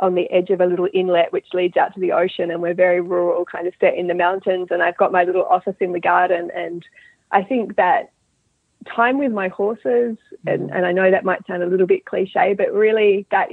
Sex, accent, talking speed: female, Australian, 240 wpm